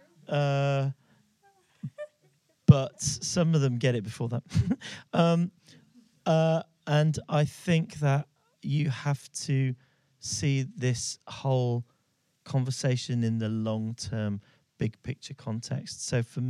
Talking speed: 105 wpm